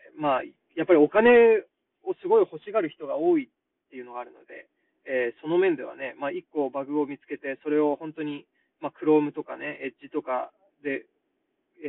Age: 20-39